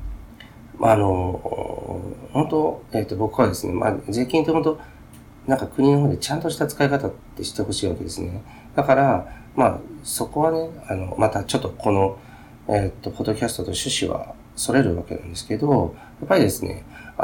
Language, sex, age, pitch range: Japanese, male, 40-59, 90-120 Hz